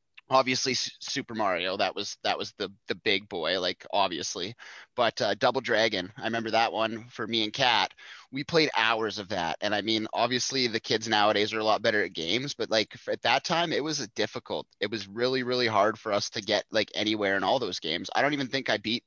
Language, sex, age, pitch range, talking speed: English, male, 20-39, 105-120 Hz, 235 wpm